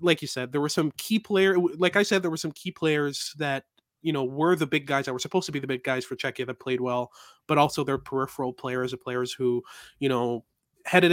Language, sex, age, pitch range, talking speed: English, male, 20-39, 130-170 Hz, 255 wpm